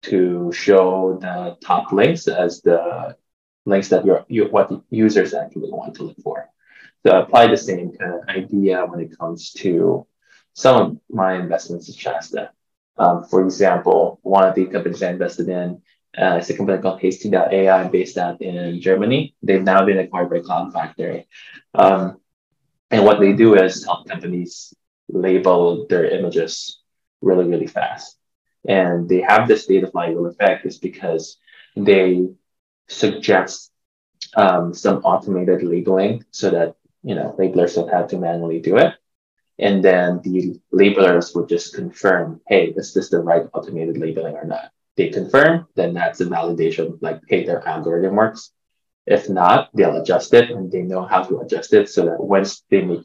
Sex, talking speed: male, 165 wpm